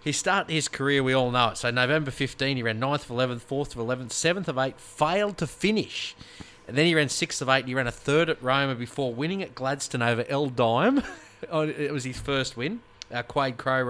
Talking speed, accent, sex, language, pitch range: 235 wpm, Australian, male, English, 115-140 Hz